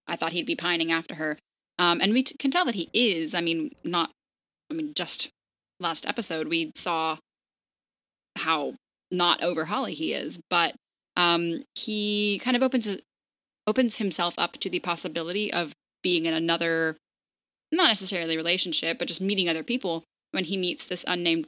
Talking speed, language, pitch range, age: 170 wpm, English, 165-205 Hz, 10-29